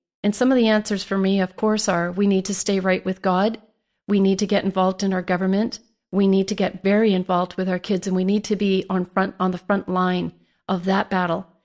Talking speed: 245 wpm